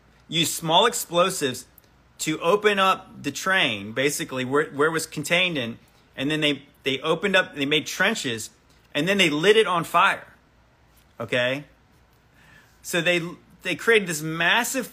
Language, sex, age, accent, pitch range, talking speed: English, male, 30-49, American, 130-175 Hz, 155 wpm